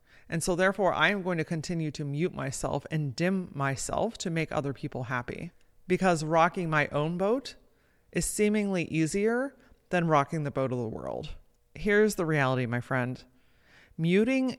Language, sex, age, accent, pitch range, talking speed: English, female, 30-49, American, 140-180 Hz, 165 wpm